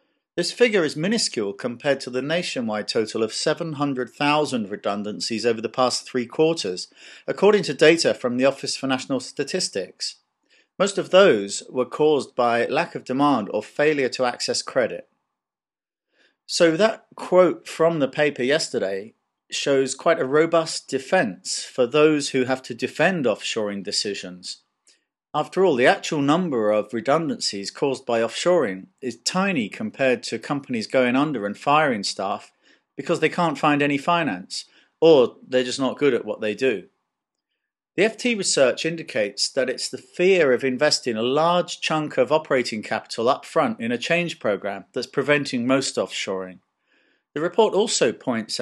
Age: 40-59